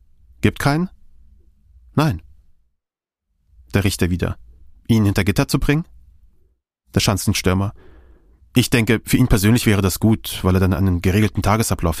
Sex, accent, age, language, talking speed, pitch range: male, German, 30-49, German, 135 wpm, 90-120 Hz